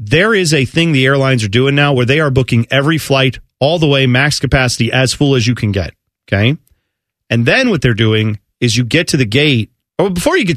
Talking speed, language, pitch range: 235 wpm, English, 125-180 Hz